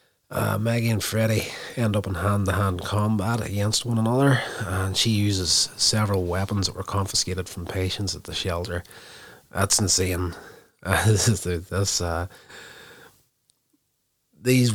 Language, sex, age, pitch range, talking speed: English, male, 30-49, 90-105 Hz, 120 wpm